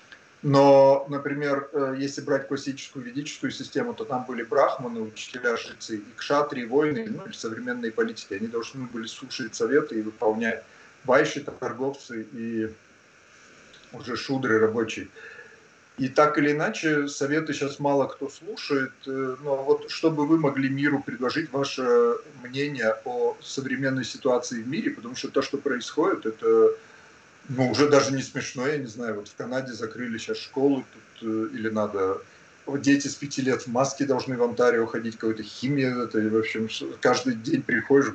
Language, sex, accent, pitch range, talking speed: Russian, male, native, 115-145 Hz, 150 wpm